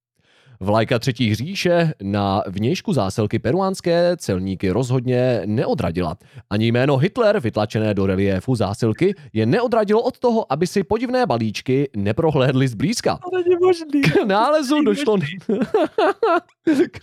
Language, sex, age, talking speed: Czech, male, 20-39, 100 wpm